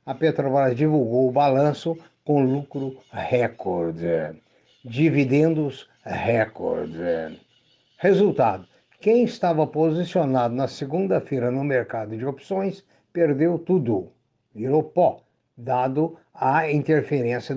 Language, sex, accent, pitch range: Portuguese, male, Brazilian, 130-170 Hz